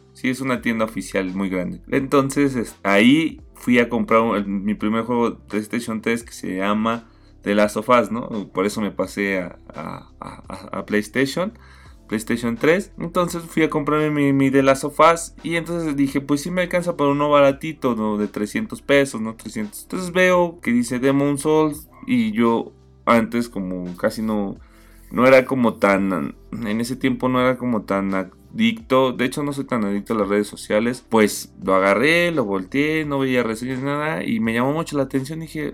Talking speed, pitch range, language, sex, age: 190 wpm, 105-150 Hz, Spanish, male, 20-39